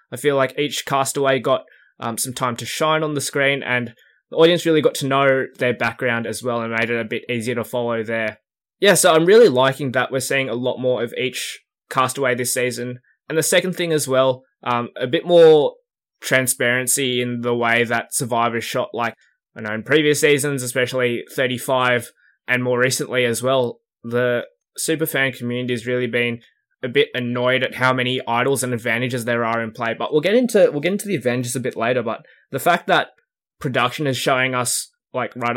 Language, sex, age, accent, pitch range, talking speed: English, male, 20-39, Australian, 120-140 Hz, 205 wpm